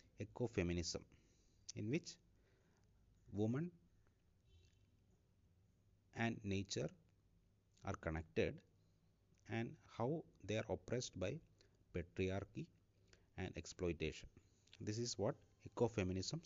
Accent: Indian